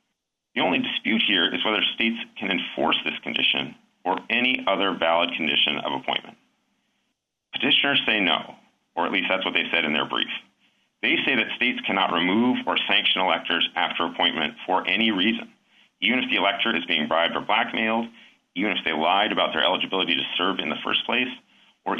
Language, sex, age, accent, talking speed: English, male, 40-59, American, 185 wpm